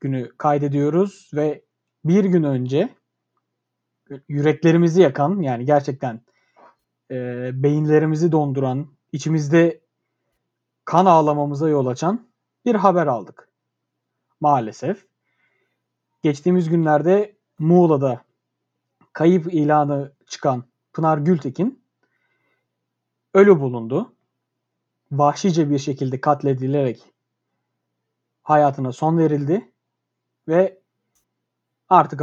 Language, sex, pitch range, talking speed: Turkish, male, 140-180 Hz, 75 wpm